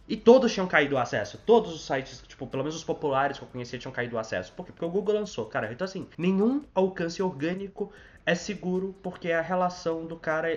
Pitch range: 120-185 Hz